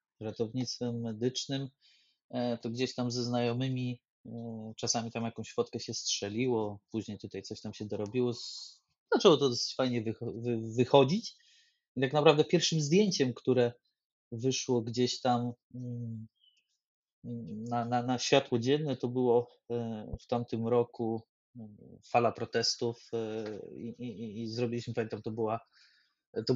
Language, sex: Polish, male